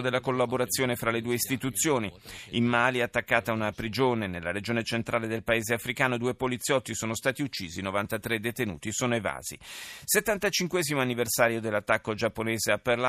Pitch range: 110-135 Hz